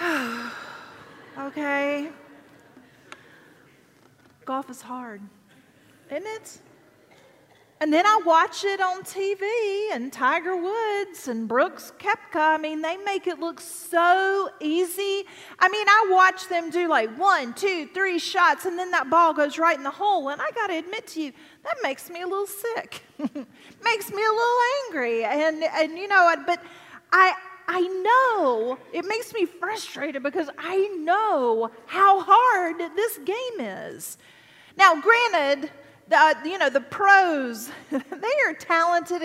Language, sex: English, female